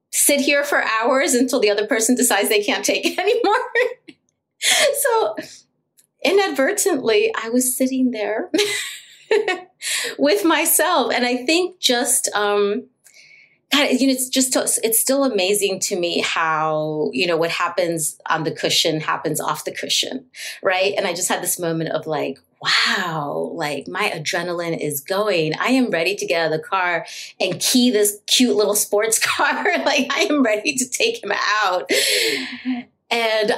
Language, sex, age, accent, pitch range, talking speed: English, female, 30-49, American, 170-265 Hz, 155 wpm